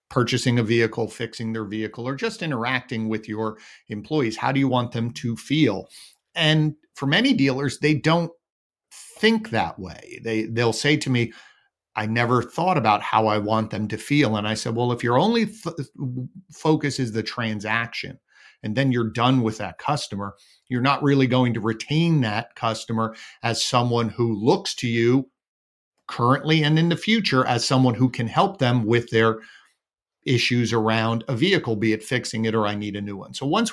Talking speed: 185 wpm